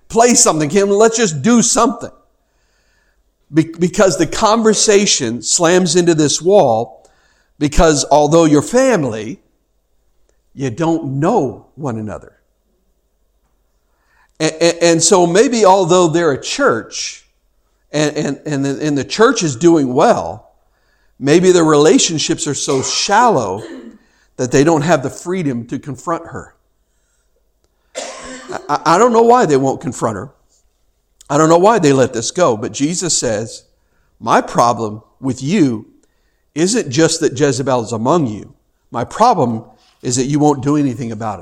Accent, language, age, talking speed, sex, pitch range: American, English, 60-79, 140 wpm, male, 140-180 Hz